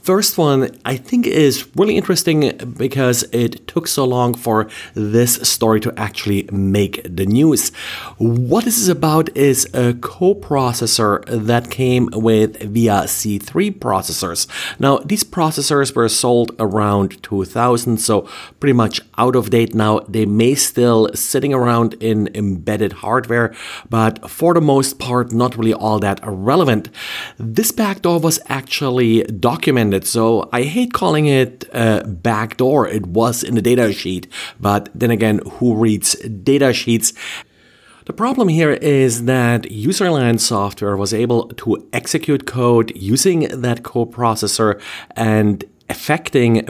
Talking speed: 140 wpm